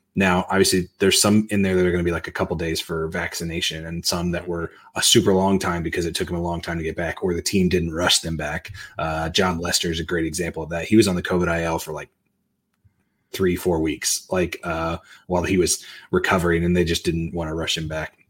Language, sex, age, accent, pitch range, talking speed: English, male, 30-49, American, 85-105 Hz, 255 wpm